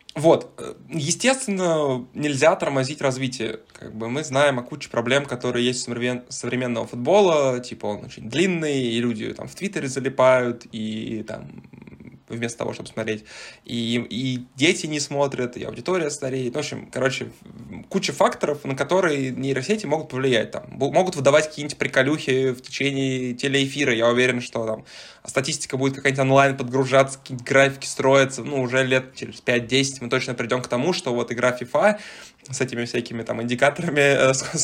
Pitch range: 120-140 Hz